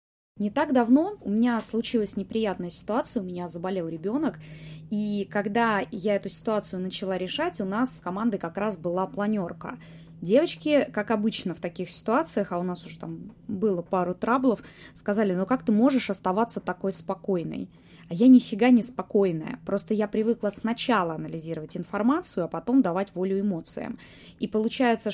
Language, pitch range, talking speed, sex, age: Russian, 185-230 Hz, 160 wpm, female, 20-39